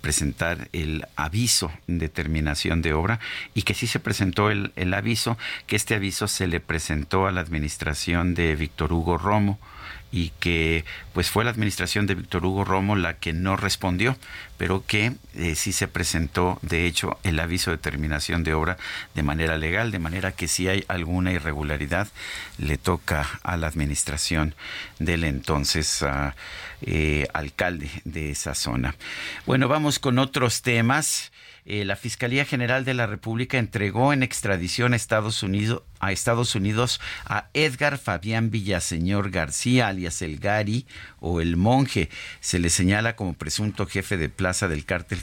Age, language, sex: 50-69, Spanish, male